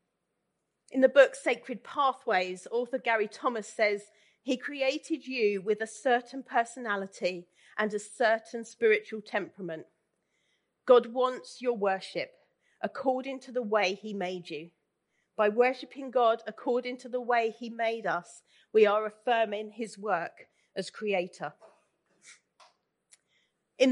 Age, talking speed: 40-59, 125 wpm